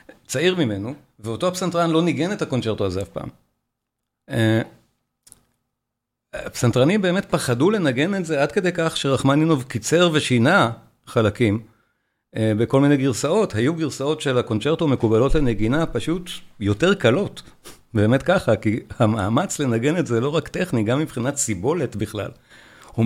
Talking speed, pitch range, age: 140 wpm, 115-150 Hz, 50-69